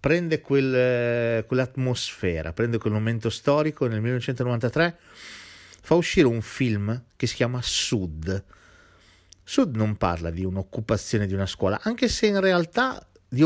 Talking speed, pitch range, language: 140 wpm, 95-140 Hz, Italian